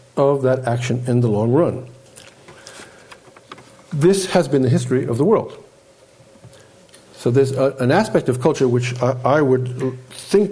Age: 50-69